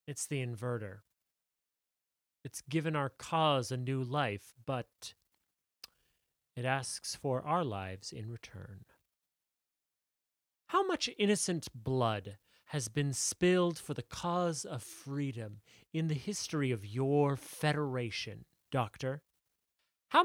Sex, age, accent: male, 30-49, American